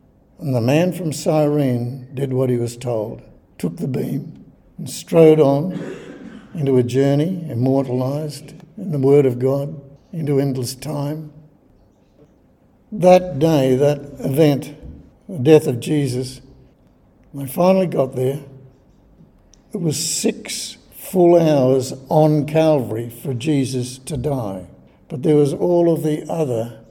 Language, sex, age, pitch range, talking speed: English, male, 60-79, 130-155 Hz, 130 wpm